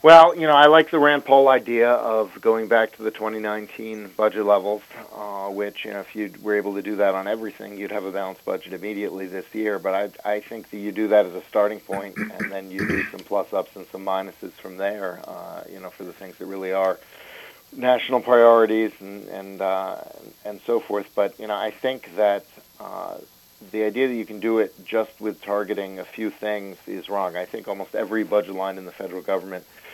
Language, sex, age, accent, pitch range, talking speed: English, male, 40-59, American, 95-110 Hz, 220 wpm